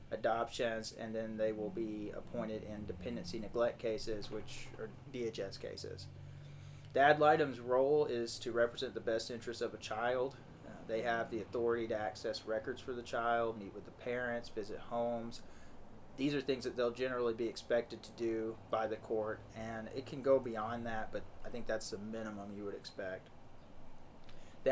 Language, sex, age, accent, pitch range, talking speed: English, male, 30-49, American, 110-130 Hz, 175 wpm